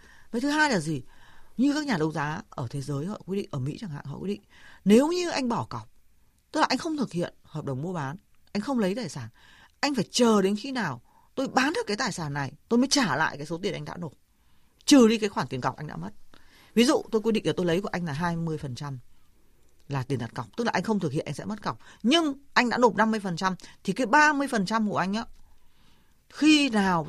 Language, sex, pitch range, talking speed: Vietnamese, female, 140-225 Hz, 255 wpm